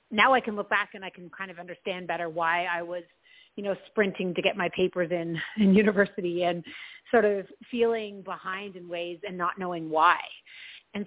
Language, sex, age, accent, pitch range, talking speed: English, female, 30-49, American, 180-215 Hz, 200 wpm